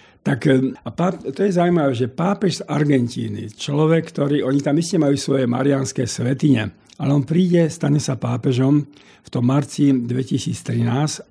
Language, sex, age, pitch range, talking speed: Slovak, male, 50-69, 120-150 Hz, 150 wpm